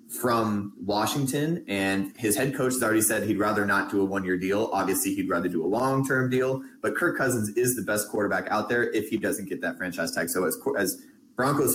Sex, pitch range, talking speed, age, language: male, 90-115 Hz, 220 wpm, 30-49, English